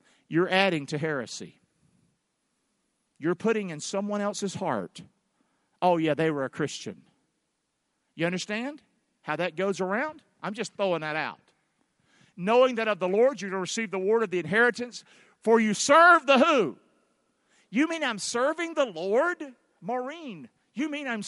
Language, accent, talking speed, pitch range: English, American, 160 wpm, 180-245 Hz